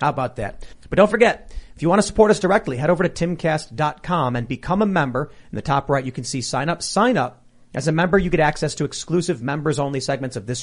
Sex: male